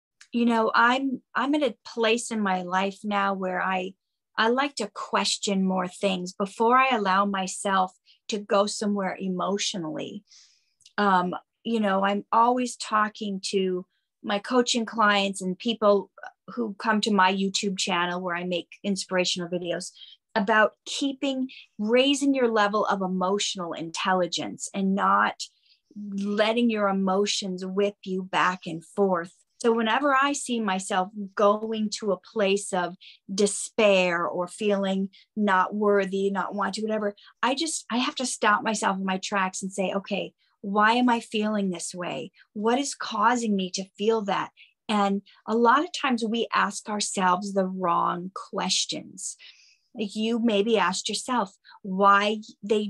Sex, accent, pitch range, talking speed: female, American, 190-225 Hz, 145 wpm